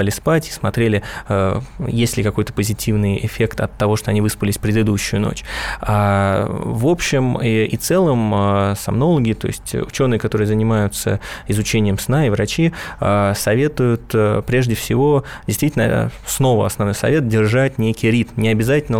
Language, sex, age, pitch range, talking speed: Russian, male, 20-39, 105-120 Hz, 135 wpm